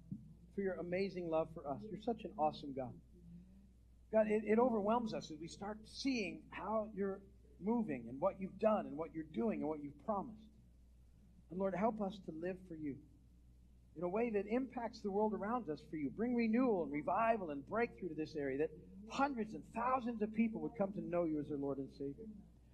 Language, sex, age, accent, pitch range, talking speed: English, male, 50-69, American, 145-215 Hz, 210 wpm